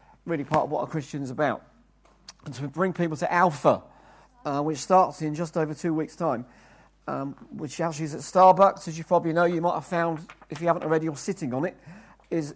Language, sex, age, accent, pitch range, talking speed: English, male, 50-69, British, 155-180 Hz, 220 wpm